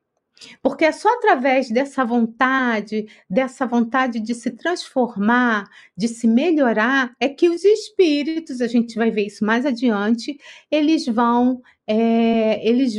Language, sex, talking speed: Portuguese, female, 120 wpm